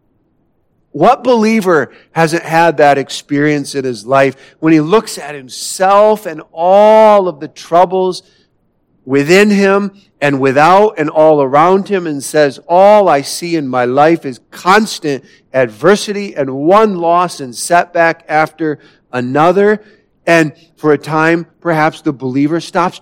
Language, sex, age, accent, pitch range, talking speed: English, male, 50-69, American, 140-185 Hz, 140 wpm